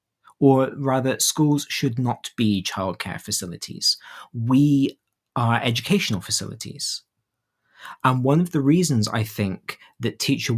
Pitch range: 105-135 Hz